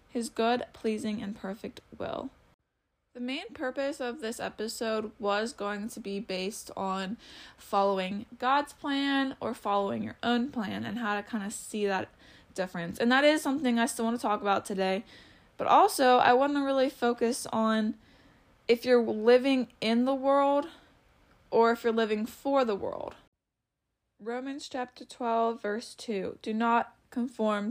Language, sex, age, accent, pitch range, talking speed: English, female, 20-39, American, 215-255 Hz, 160 wpm